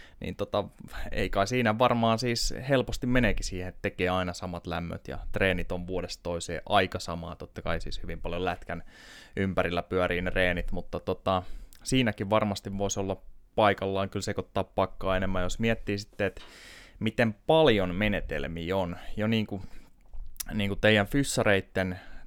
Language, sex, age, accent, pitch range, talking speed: Finnish, male, 20-39, native, 90-105 Hz, 155 wpm